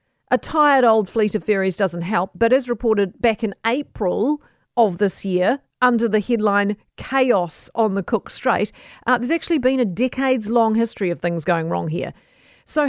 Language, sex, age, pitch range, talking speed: English, female, 40-59, 195-265 Hz, 180 wpm